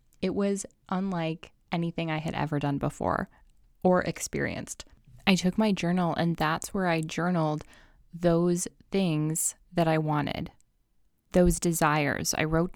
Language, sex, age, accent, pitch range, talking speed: English, female, 10-29, American, 160-195 Hz, 135 wpm